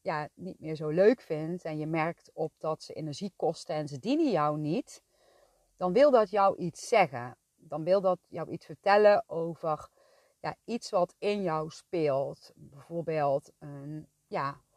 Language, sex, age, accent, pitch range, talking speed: Dutch, female, 30-49, Dutch, 155-190 Hz, 165 wpm